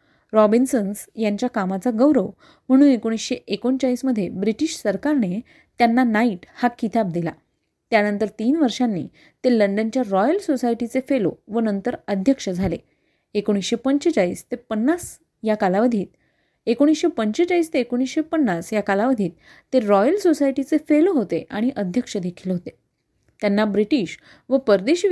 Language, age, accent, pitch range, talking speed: Marathi, 30-49, native, 205-275 Hz, 115 wpm